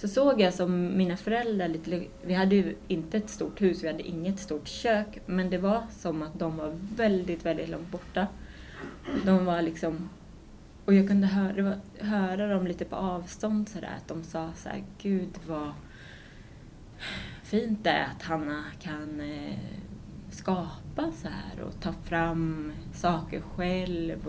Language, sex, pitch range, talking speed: Swedish, female, 155-190 Hz, 155 wpm